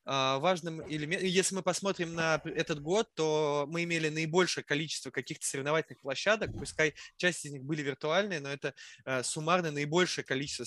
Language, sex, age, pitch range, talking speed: Russian, male, 20-39, 140-165 Hz, 155 wpm